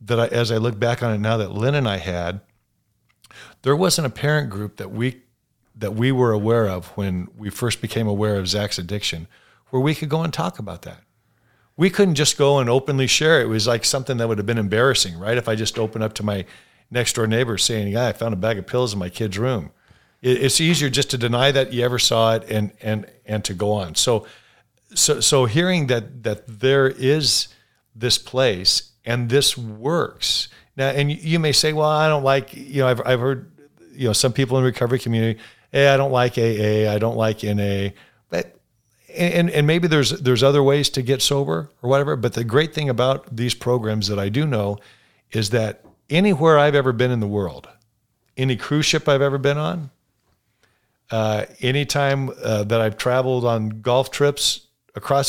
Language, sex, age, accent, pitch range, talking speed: English, male, 50-69, American, 110-140 Hz, 210 wpm